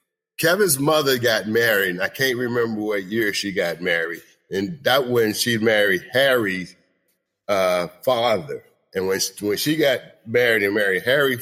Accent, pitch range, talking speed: American, 100-125 Hz, 165 wpm